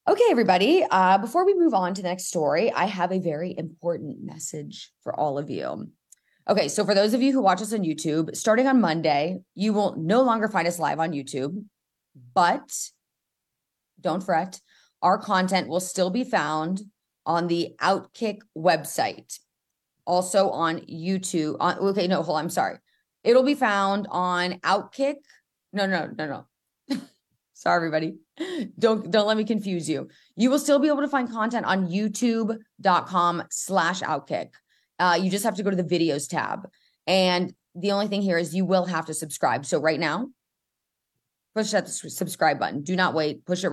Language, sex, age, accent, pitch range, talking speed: English, female, 30-49, American, 165-210 Hz, 175 wpm